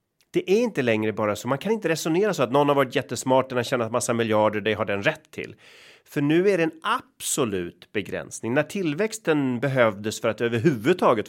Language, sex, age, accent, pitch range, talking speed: Swedish, male, 30-49, native, 110-150 Hz, 200 wpm